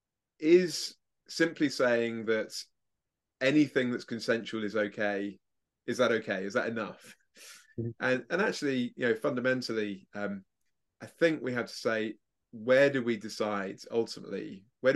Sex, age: male, 20-39